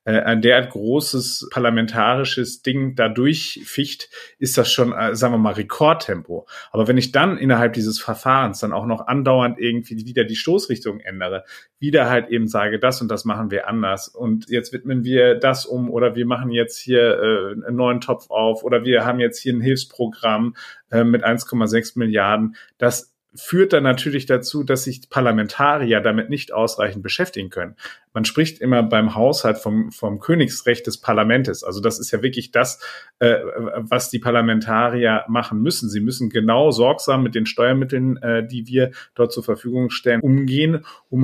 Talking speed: 175 wpm